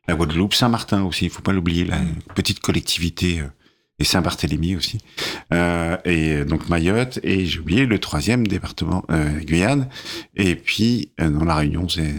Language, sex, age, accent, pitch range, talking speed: French, male, 50-69, French, 75-95 Hz, 170 wpm